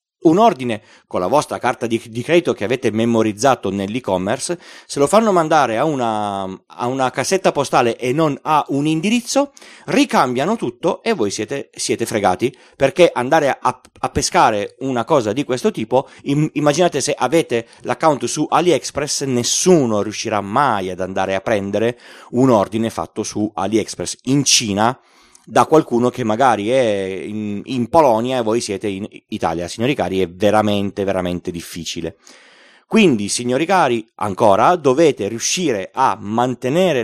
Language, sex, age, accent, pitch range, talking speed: Italian, male, 30-49, native, 105-150 Hz, 145 wpm